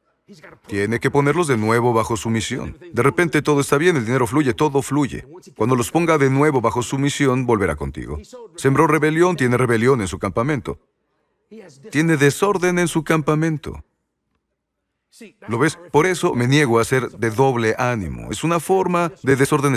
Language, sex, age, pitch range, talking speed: Spanish, male, 40-59, 120-160 Hz, 170 wpm